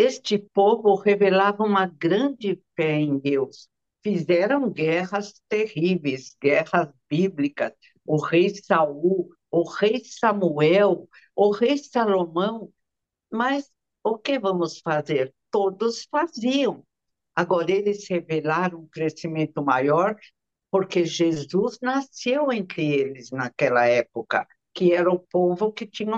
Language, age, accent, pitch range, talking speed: Portuguese, 60-79, Brazilian, 170-225 Hz, 110 wpm